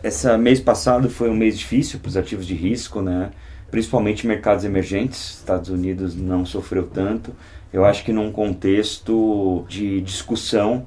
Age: 30-49